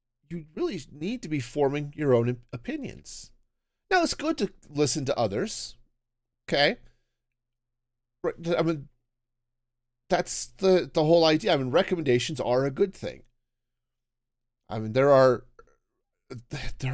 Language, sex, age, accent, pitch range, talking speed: English, male, 40-59, American, 120-165 Hz, 125 wpm